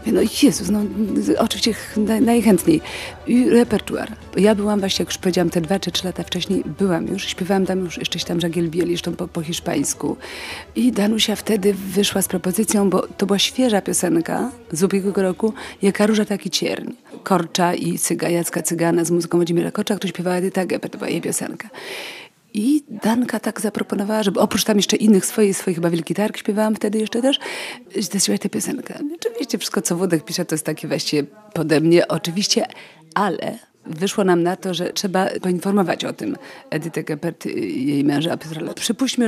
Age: 40-59